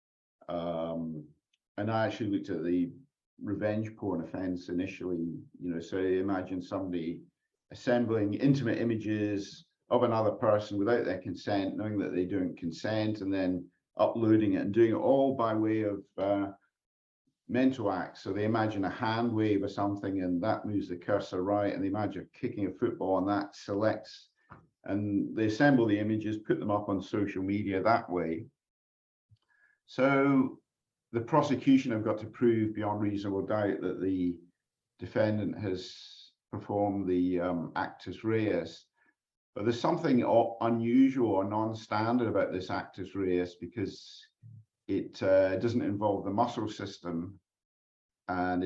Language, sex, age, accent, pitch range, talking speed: English, male, 50-69, British, 90-110 Hz, 145 wpm